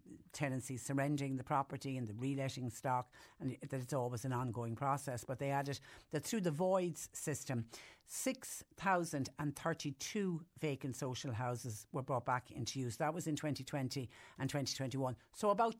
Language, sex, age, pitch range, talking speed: English, female, 60-79, 130-150 Hz, 150 wpm